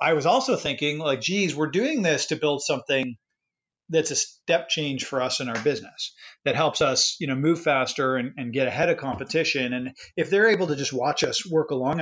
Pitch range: 130-170 Hz